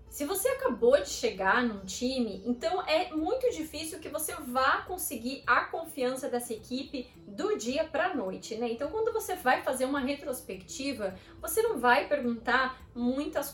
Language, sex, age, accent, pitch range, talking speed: Portuguese, female, 20-39, Brazilian, 235-305 Hz, 160 wpm